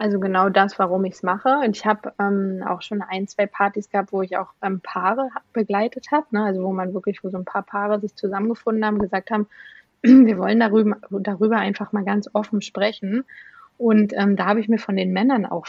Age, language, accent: 20-39, German, German